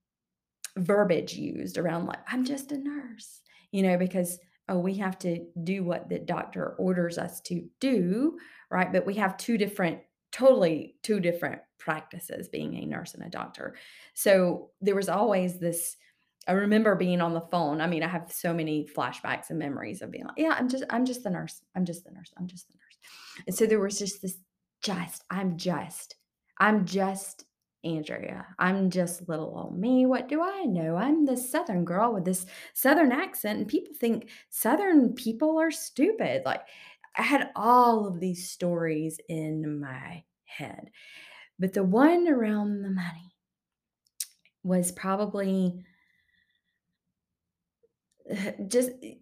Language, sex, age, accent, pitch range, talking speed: English, female, 30-49, American, 175-235 Hz, 160 wpm